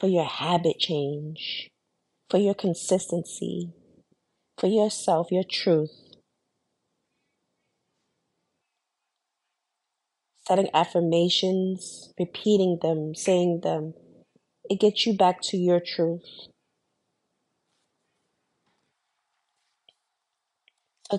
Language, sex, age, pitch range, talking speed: English, female, 30-49, 160-190 Hz, 70 wpm